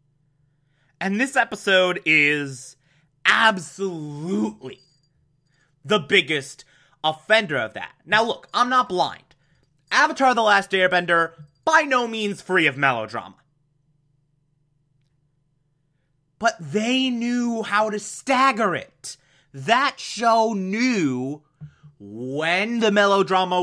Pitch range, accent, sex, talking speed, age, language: 140-195 Hz, American, male, 95 wpm, 30-49, English